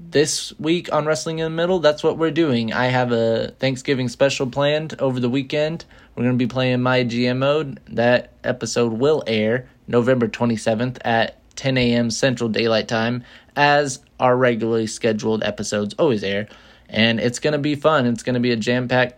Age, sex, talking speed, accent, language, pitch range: 20-39, male, 185 wpm, American, English, 120-140 Hz